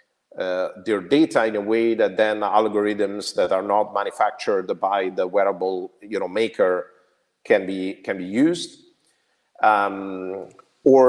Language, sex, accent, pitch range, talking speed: English, male, Italian, 110-155 Hz, 140 wpm